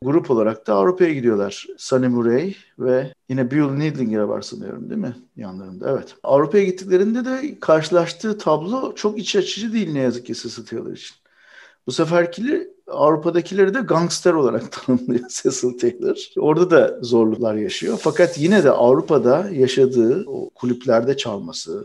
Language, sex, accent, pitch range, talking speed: English, male, Turkish, 130-180 Hz, 145 wpm